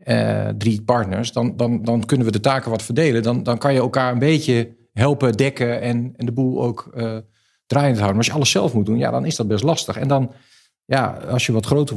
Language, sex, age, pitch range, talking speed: Dutch, male, 50-69, 105-125 Hz, 230 wpm